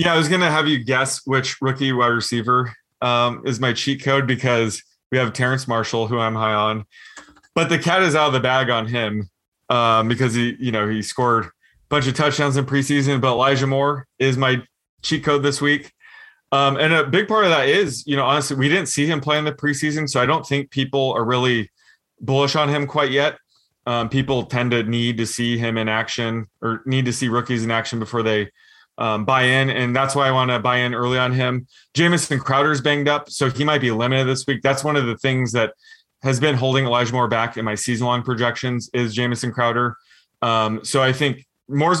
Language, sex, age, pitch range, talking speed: English, male, 20-39, 120-145 Hz, 225 wpm